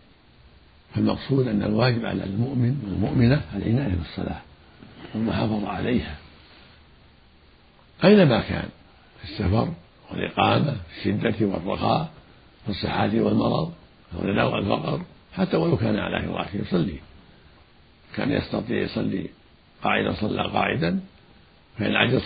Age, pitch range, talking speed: 60-79, 105-135 Hz, 100 wpm